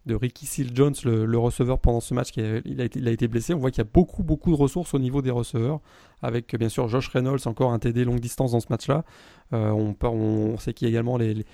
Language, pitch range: French, 115-140 Hz